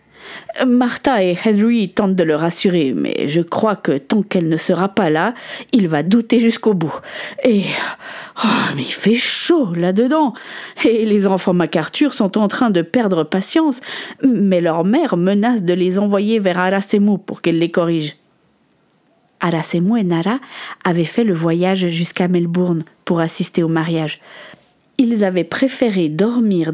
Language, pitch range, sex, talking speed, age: French, 175-255 Hz, female, 160 wpm, 40-59